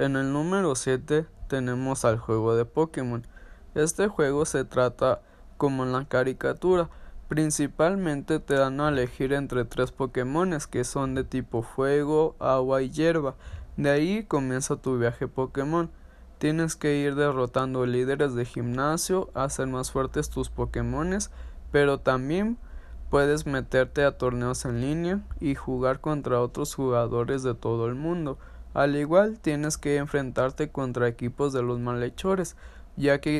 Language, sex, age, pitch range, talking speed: Spanish, male, 20-39, 120-145 Hz, 145 wpm